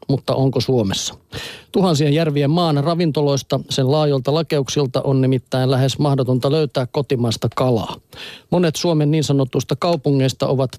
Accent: native